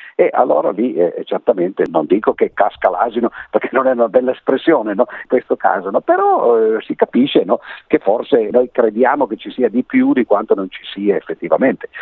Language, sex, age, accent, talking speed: Italian, male, 50-69, native, 205 wpm